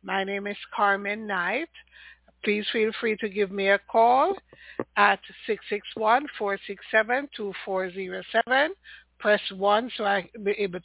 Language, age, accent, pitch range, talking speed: English, 60-79, American, 190-225 Hz, 165 wpm